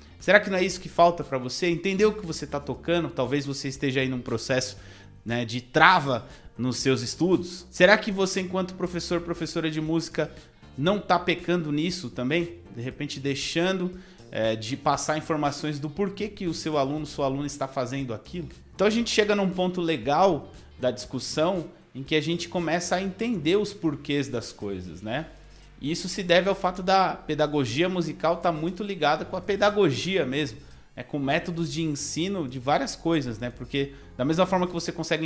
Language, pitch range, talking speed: Portuguese, 135-175 Hz, 190 wpm